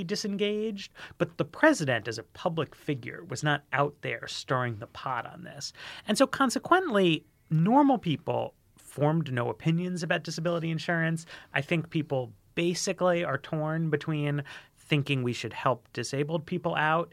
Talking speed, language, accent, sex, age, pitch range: 145 wpm, English, American, male, 30-49, 125-175 Hz